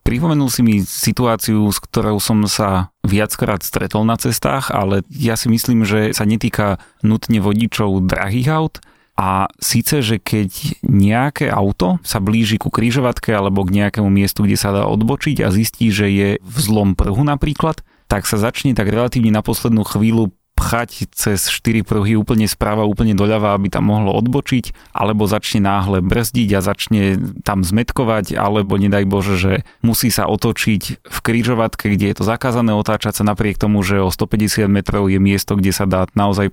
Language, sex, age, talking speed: Slovak, male, 30-49, 170 wpm